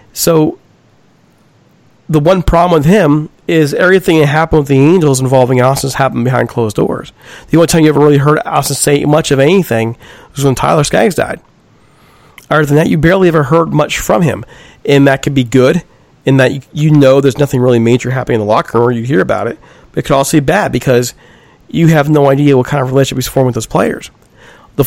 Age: 40-59